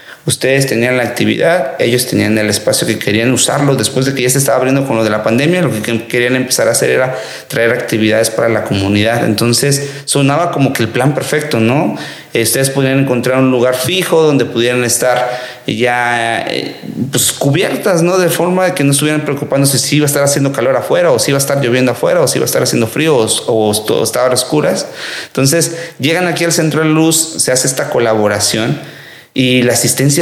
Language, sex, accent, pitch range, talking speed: English, male, Mexican, 115-145 Hz, 210 wpm